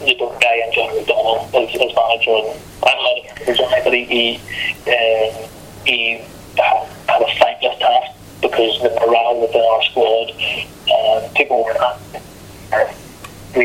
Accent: American